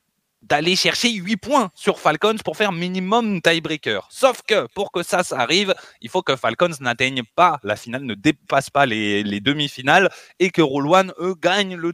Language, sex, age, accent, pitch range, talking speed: French, male, 20-39, French, 130-185 Hz, 185 wpm